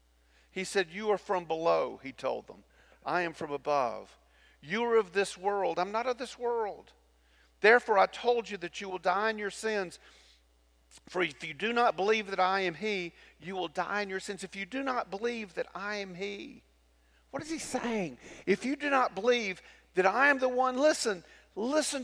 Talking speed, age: 205 wpm, 50-69